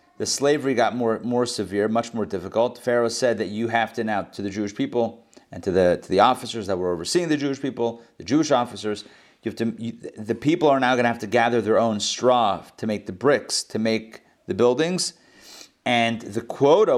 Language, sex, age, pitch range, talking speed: English, male, 40-59, 115-135 Hz, 220 wpm